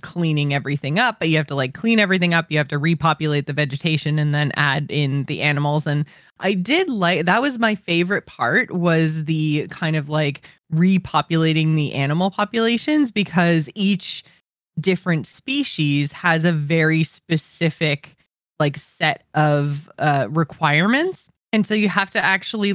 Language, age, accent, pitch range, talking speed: English, 20-39, American, 150-175 Hz, 160 wpm